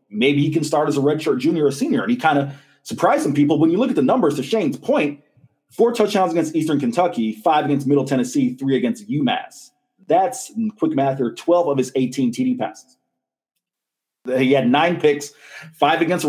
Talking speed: 200 wpm